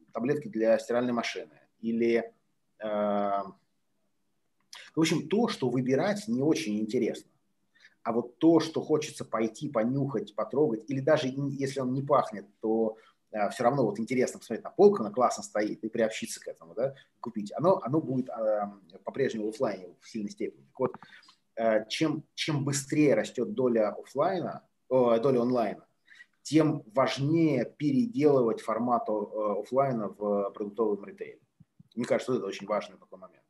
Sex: male